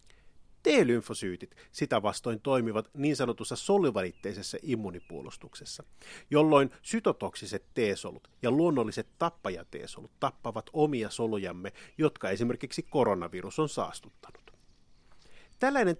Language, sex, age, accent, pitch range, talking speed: Finnish, male, 30-49, native, 110-150 Hz, 85 wpm